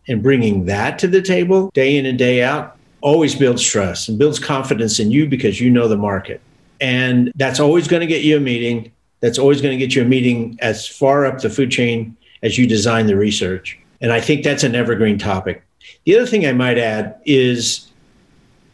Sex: male